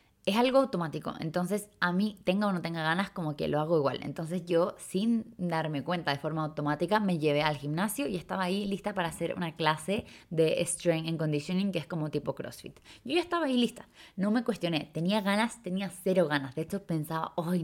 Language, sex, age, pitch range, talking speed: Spanish, female, 20-39, 165-210 Hz, 210 wpm